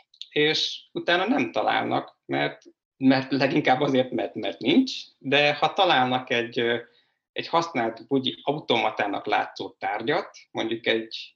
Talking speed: 120 wpm